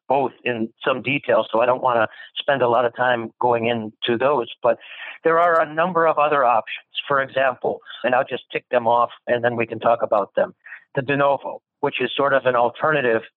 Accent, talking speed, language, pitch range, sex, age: American, 220 wpm, English, 120-145 Hz, male, 60-79